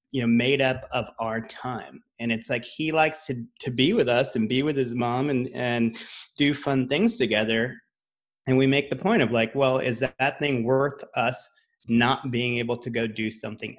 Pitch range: 115-150 Hz